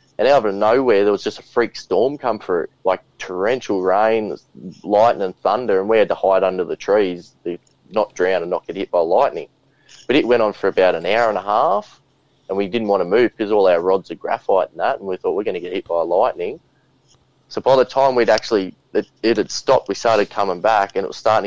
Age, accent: 20-39, Australian